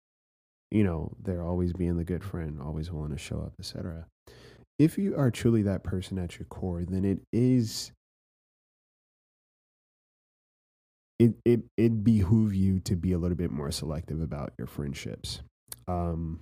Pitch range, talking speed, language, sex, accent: 85-105 Hz, 155 wpm, English, male, American